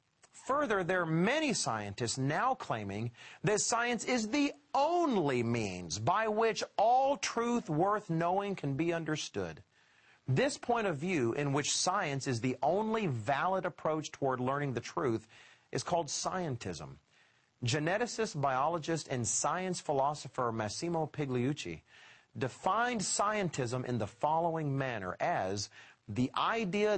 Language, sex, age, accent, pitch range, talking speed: English, male, 40-59, American, 125-200 Hz, 125 wpm